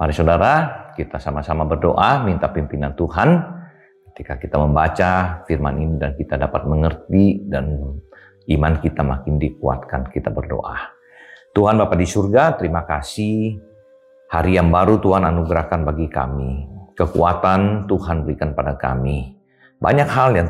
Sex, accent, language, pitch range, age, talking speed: male, native, Indonesian, 75-95 Hz, 40-59, 130 wpm